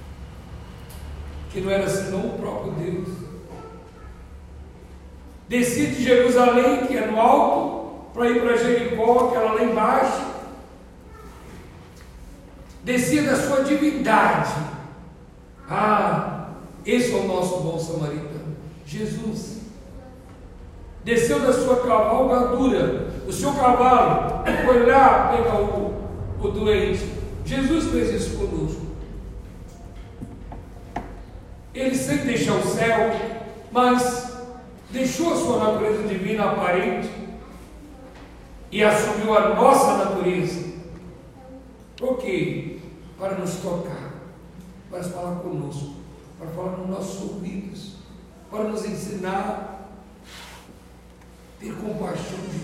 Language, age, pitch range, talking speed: Portuguese, 60-79, 165-235 Hz, 100 wpm